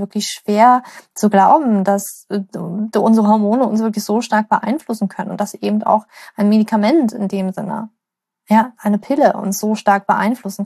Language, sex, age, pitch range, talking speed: German, female, 20-39, 205-230 Hz, 165 wpm